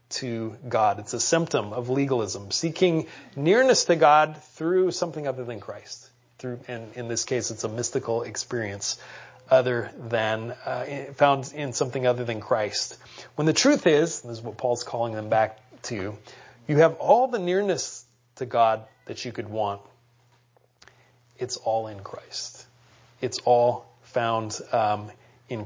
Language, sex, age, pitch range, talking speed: English, male, 30-49, 115-140 Hz, 155 wpm